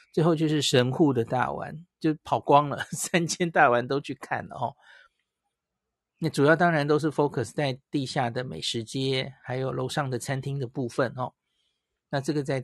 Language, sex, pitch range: Chinese, male, 125-155 Hz